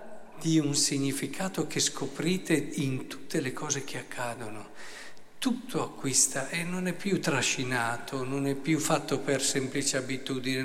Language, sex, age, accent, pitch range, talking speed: Italian, male, 50-69, native, 135-190 Hz, 140 wpm